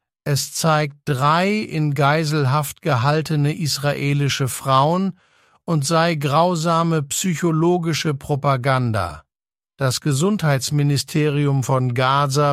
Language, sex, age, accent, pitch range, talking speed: English, male, 50-69, German, 130-155 Hz, 80 wpm